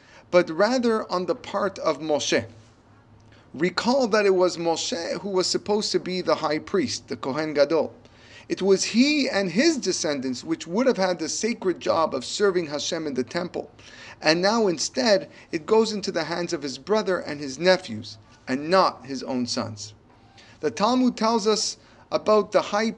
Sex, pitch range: male, 130-210 Hz